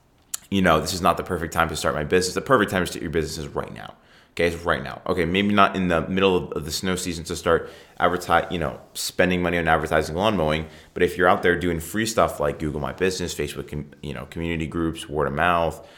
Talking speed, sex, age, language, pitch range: 250 wpm, male, 20-39, English, 75-90 Hz